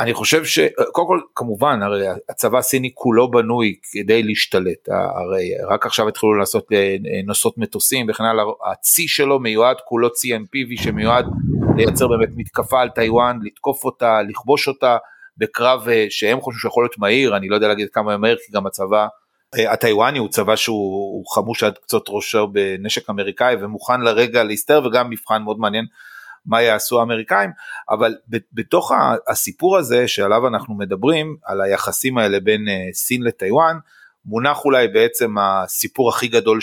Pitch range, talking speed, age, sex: 105-130 Hz, 150 wpm, 30-49, male